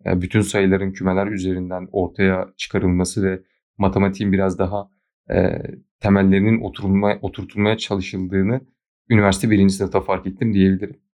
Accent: native